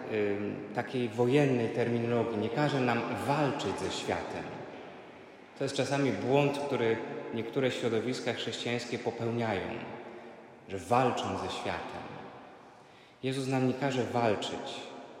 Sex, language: male, Polish